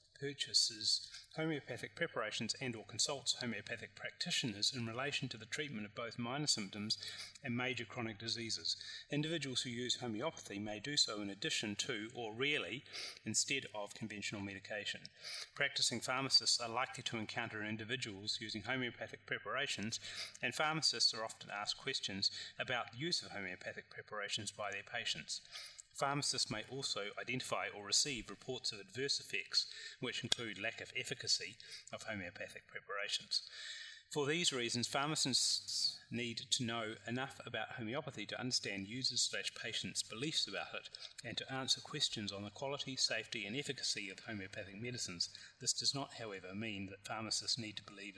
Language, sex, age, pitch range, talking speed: English, male, 30-49, 105-135 Hz, 150 wpm